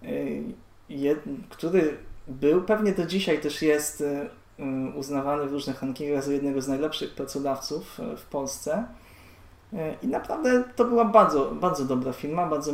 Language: Polish